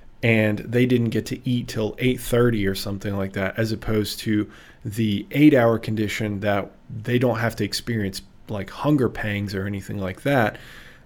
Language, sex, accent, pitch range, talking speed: English, male, American, 100-120 Hz, 170 wpm